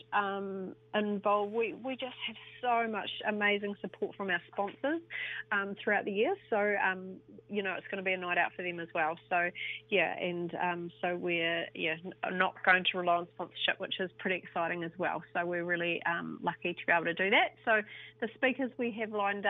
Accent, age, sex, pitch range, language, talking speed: Australian, 30-49, female, 175-205 Hz, English, 205 wpm